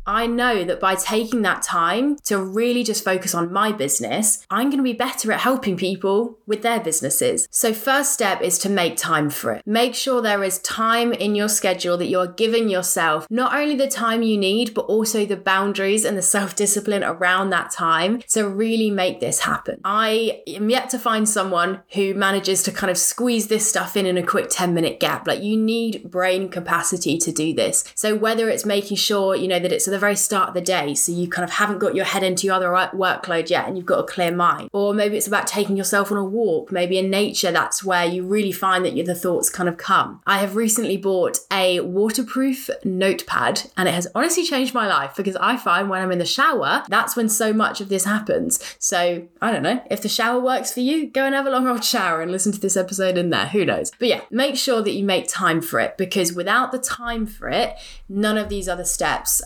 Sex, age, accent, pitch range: female, 20-39, British, 185-225 Hz